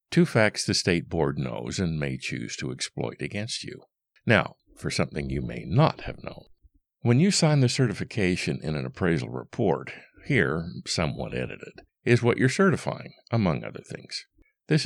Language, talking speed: English, 165 wpm